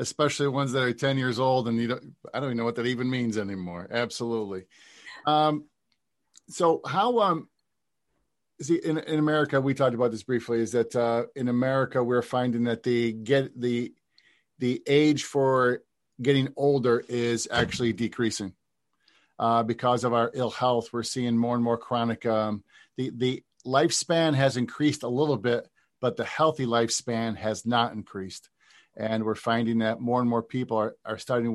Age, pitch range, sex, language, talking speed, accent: 50-69, 110-135 Hz, male, English, 175 wpm, American